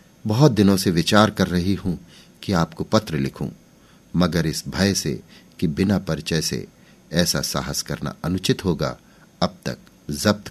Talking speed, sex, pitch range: 155 wpm, male, 80-100 Hz